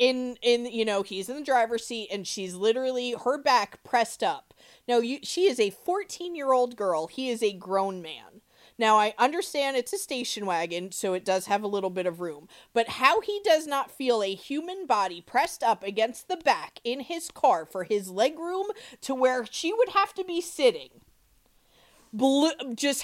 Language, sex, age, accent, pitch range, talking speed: English, female, 30-49, American, 215-290 Hz, 195 wpm